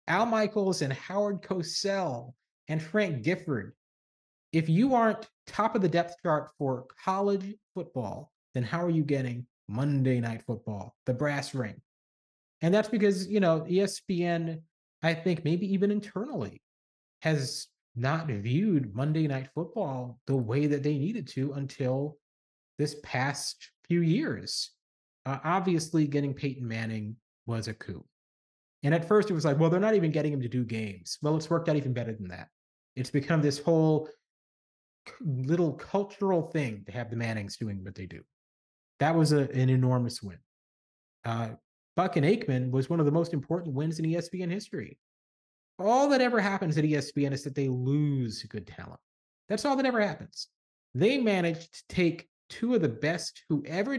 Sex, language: male, English